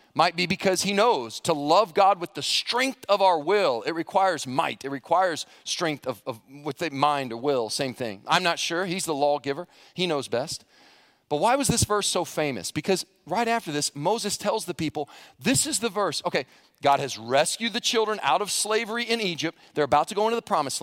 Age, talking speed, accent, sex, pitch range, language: 40-59, 215 wpm, American, male, 125-170 Hz, English